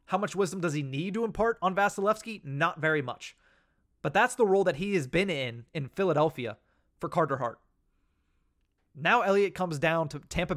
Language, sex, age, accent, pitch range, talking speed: English, male, 30-49, American, 130-175 Hz, 185 wpm